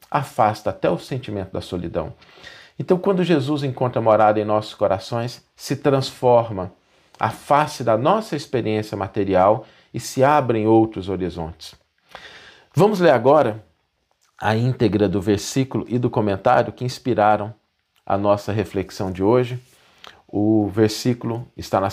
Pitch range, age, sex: 105-140 Hz, 50-69, male